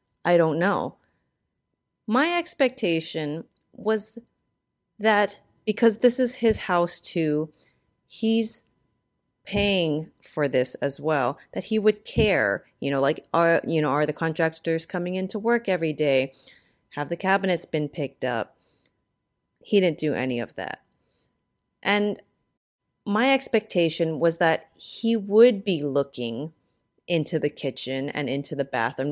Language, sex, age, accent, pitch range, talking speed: English, female, 30-49, American, 150-210 Hz, 135 wpm